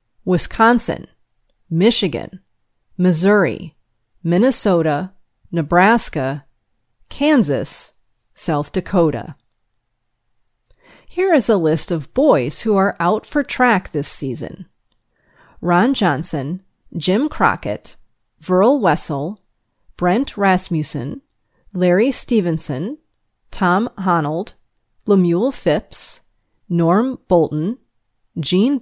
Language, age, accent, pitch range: English, 30-49, American, 150-215 Hz